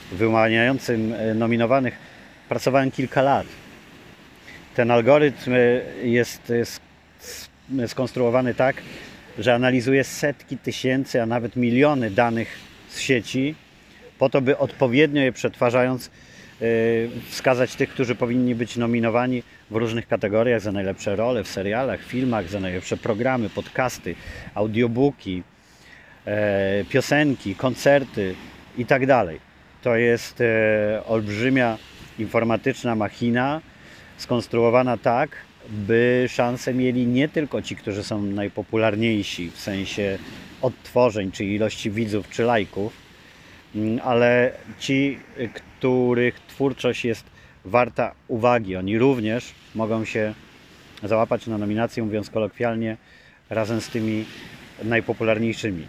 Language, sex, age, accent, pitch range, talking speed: Polish, male, 40-59, native, 105-125 Hz, 100 wpm